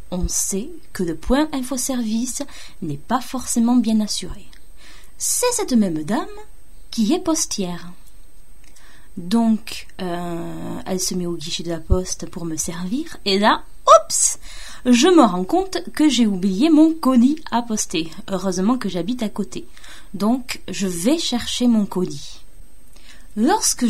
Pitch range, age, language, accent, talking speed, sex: 185-245 Hz, 20-39, French, French, 145 wpm, female